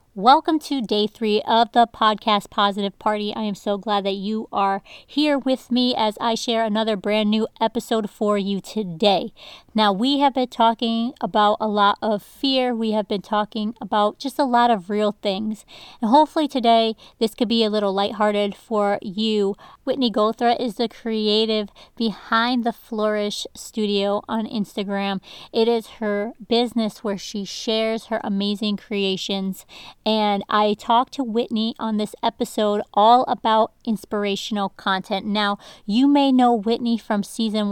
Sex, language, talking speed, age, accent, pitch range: female, English, 160 wpm, 40-59, American, 205-235 Hz